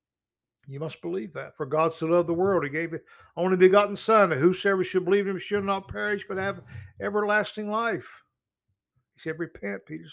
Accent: American